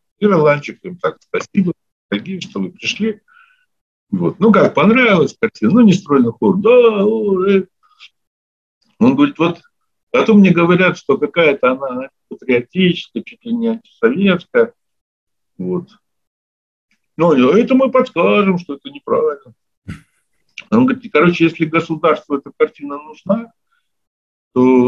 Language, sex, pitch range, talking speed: Russian, male, 140-220 Hz, 105 wpm